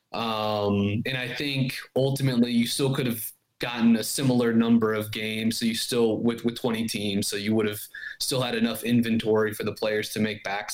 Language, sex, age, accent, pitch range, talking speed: English, male, 30-49, American, 110-135 Hz, 200 wpm